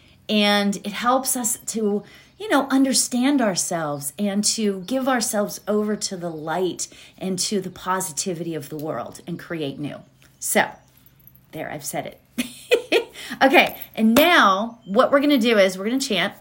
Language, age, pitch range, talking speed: English, 30-49, 165-225 Hz, 165 wpm